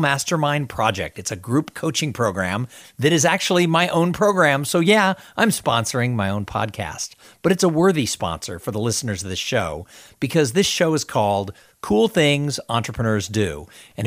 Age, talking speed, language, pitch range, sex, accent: 50-69, 175 wpm, English, 110-155 Hz, male, American